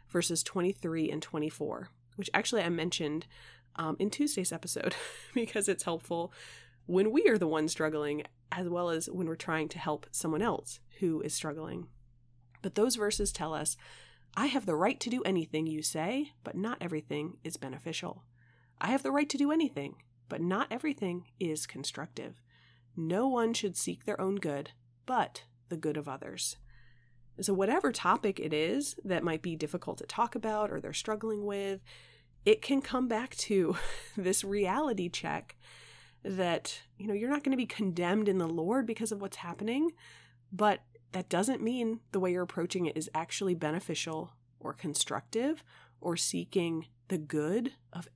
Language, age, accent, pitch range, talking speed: English, 30-49, American, 150-210 Hz, 170 wpm